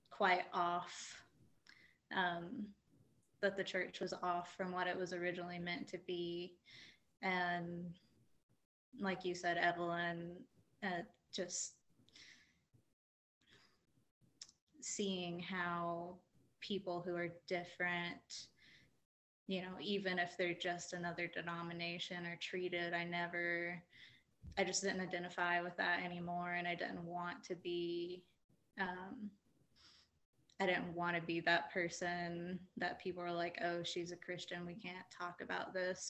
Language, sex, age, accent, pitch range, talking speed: English, female, 20-39, American, 170-180 Hz, 125 wpm